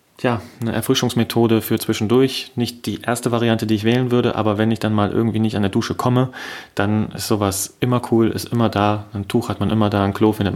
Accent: German